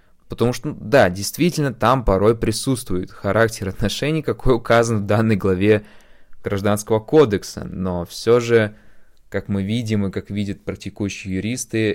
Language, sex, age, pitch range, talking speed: Russian, male, 20-39, 95-115 Hz, 135 wpm